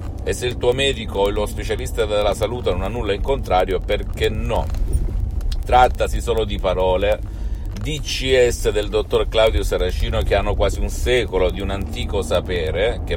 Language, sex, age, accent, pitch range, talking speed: Italian, male, 40-59, native, 90-110 Hz, 165 wpm